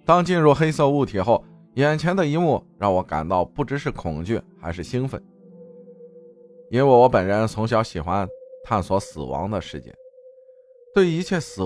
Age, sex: 20-39, male